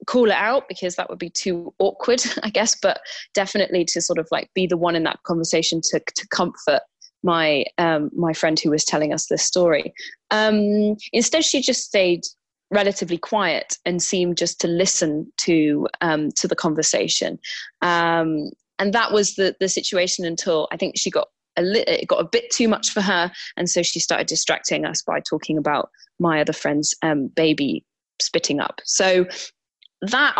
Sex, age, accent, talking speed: female, 20-39, British, 185 wpm